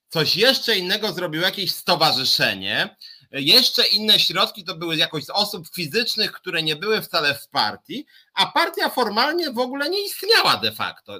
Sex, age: male, 30-49